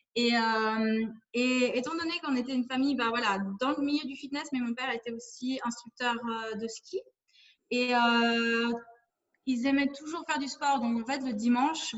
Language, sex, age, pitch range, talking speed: French, female, 20-39, 225-265 Hz, 190 wpm